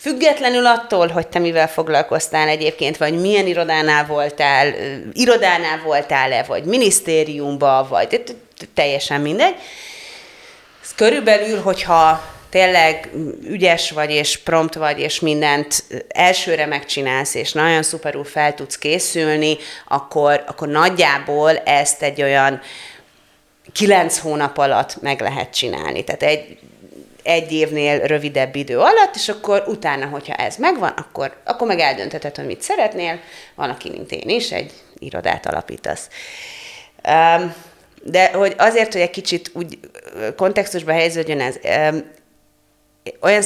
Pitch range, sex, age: 150-185 Hz, female, 30-49